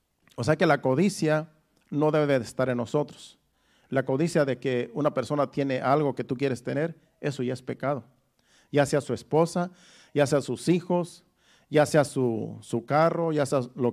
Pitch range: 130-160 Hz